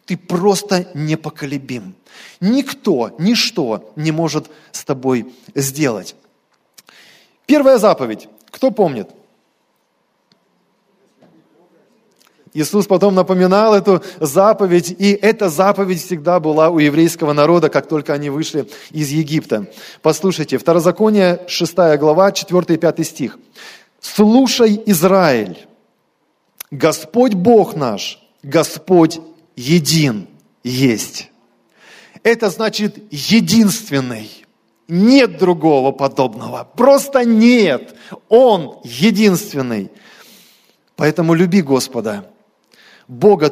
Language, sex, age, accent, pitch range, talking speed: Russian, male, 20-39, native, 155-210 Hz, 85 wpm